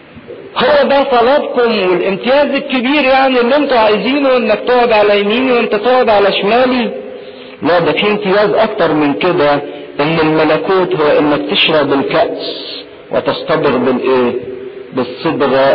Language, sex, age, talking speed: English, male, 50-69, 125 wpm